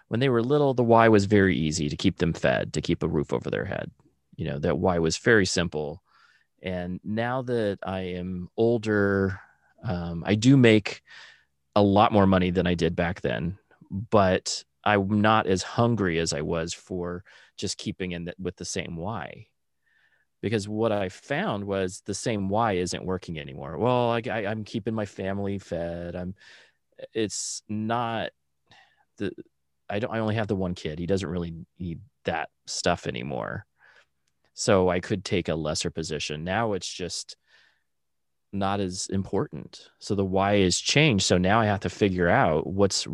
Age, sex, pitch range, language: 30-49, male, 85-105 Hz, English